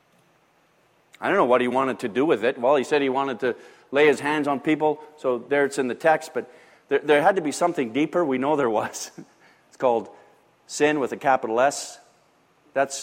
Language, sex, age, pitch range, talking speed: English, male, 50-69, 140-195 Hz, 215 wpm